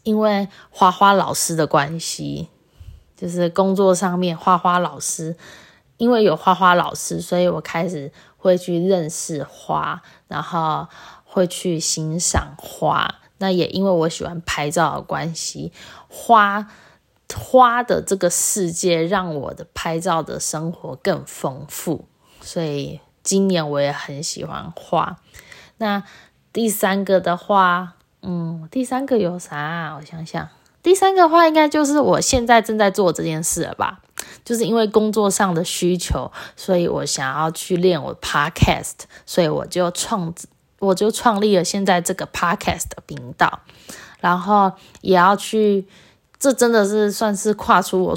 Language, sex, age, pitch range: Chinese, female, 20-39, 165-200 Hz